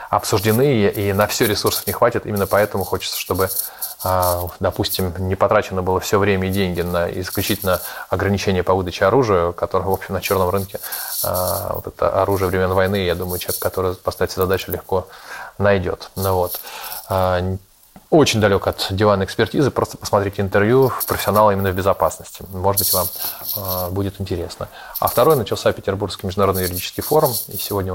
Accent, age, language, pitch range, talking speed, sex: native, 20-39, Russian, 90-100 Hz, 155 wpm, male